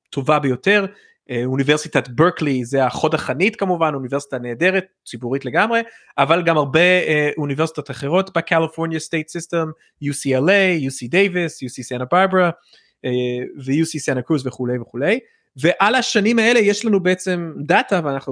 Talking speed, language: 120 wpm, Hebrew